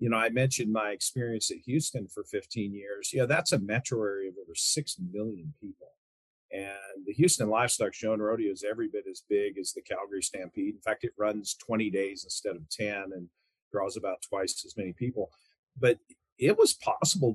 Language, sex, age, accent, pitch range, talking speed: English, male, 40-59, American, 105-165 Hz, 195 wpm